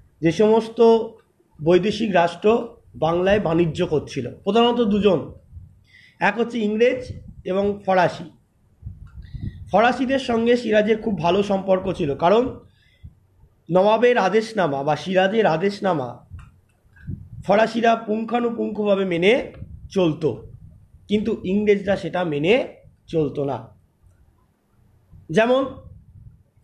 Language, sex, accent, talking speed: Bengali, male, native, 85 wpm